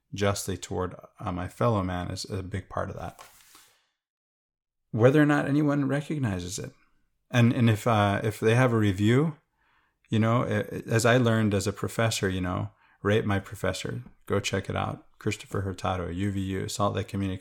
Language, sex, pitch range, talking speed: English, male, 100-115 Hz, 175 wpm